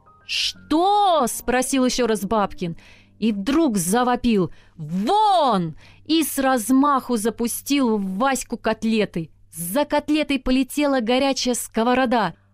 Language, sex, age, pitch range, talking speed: Russian, female, 30-49, 180-260 Hz, 100 wpm